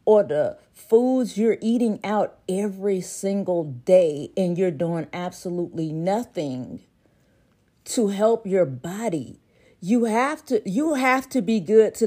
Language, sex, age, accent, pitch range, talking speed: English, female, 40-59, American, 170-220 Hz, 135 wpm